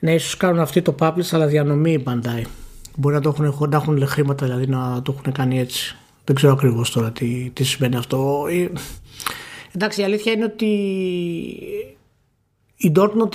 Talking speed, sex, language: 165 wpm, male, Greek